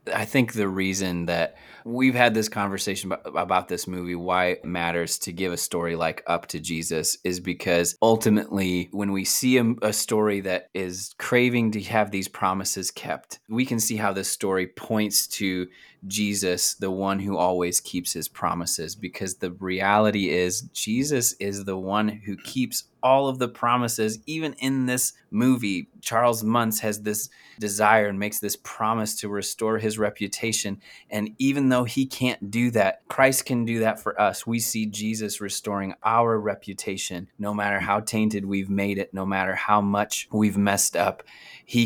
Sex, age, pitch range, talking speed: male, 20-39, 95-110 Hz, 170 wpm